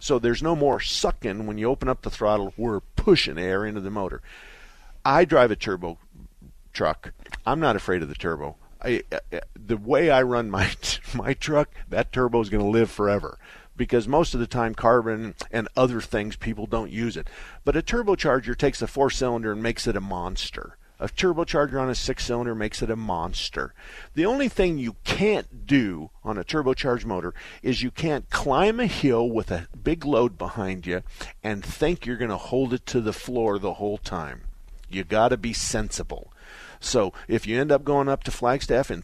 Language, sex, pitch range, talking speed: English, male, 105-140 Hz, 195 wpm